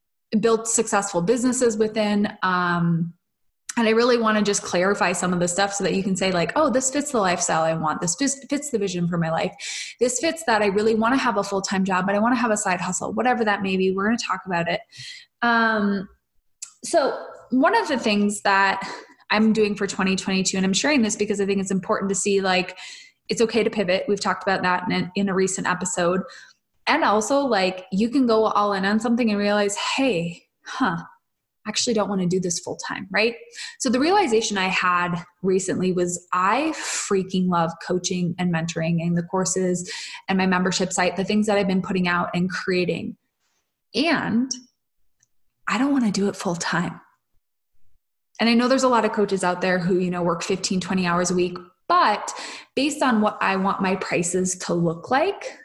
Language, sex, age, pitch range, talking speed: English, female, 20-39, 180-225 Hz, 210 wpm